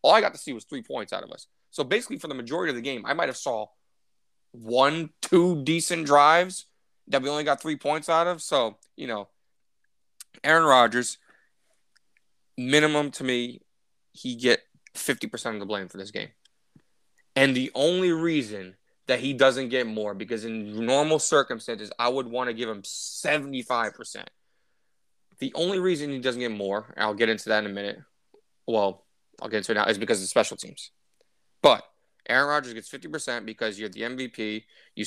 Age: 20-39